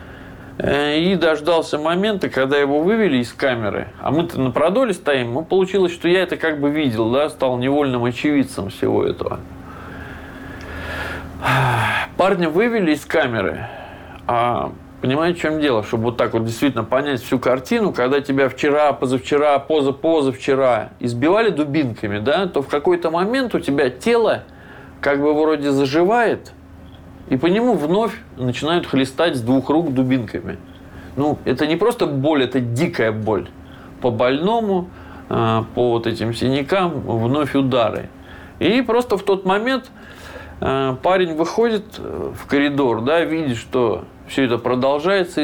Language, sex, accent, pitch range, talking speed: Ukrainian, male, native, 115-160 Hz, 140 wpm